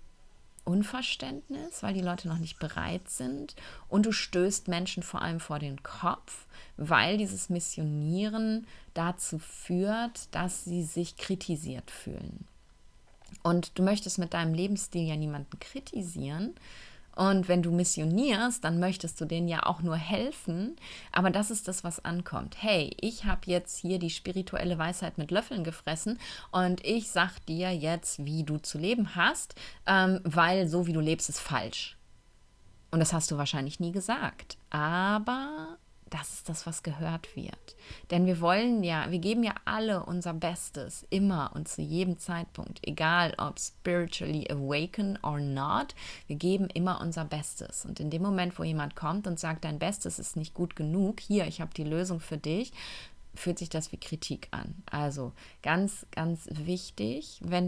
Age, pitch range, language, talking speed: 30-49, 160-195 Hz, German, 160 wpm